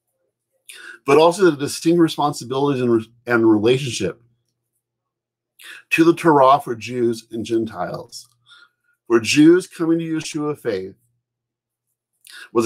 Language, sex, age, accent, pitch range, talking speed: English, male, 50-69, American, 115-145 Hz, 110 wpm